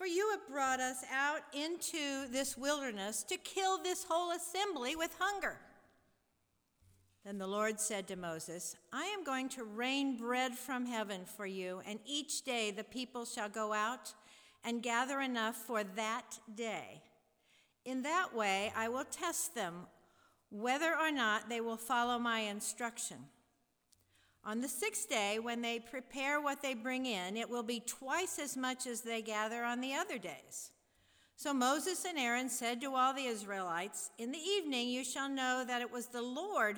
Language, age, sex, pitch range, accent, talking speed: English, 50-69, female, 215-275 Hz, American, 170 wpm